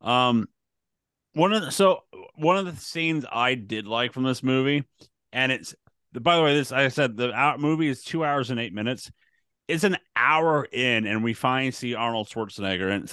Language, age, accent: English, 30-49, American